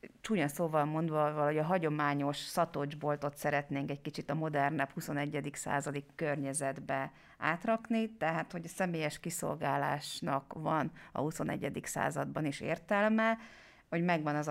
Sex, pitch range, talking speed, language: female, 145-165 Hz, 120 wpm, Hungarian